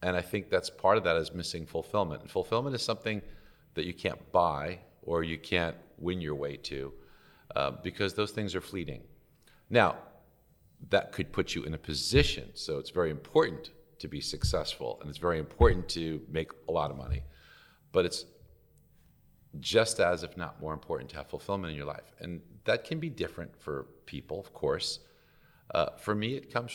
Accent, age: American, 50-69